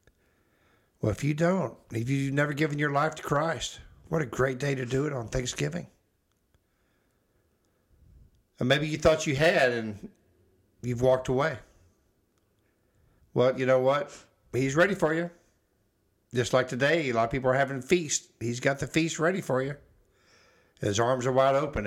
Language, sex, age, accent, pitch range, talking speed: English, male, 60-79, American, 100-135 Hz, 165 wpm